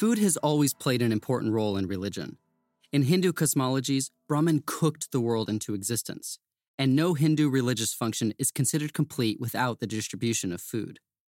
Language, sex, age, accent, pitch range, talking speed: English, male, 30-49, American, 110-145 Hz, 165 wpm